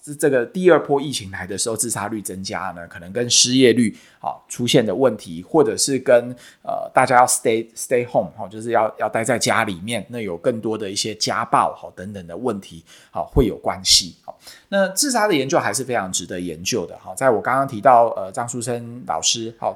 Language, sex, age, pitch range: Chinese, male, 20-39, 95-135 Hz